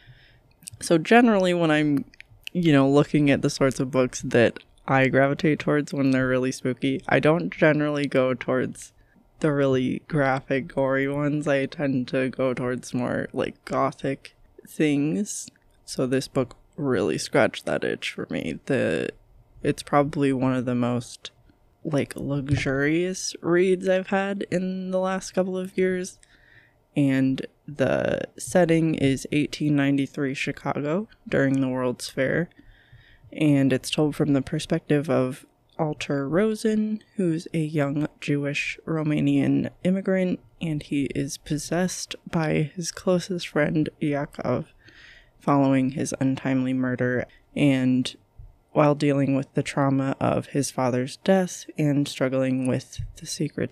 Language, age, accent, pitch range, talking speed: English, 20-39, American, 130-155 Hz, 130 wpm